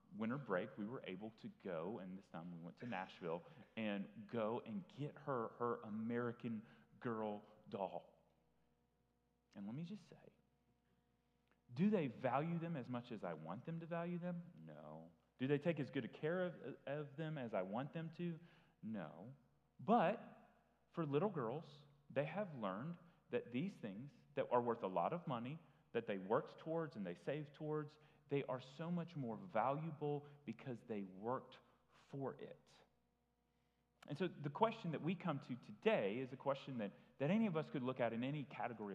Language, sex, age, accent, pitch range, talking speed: English, male, 30-49, American, 115-175 Hz, 180 wpm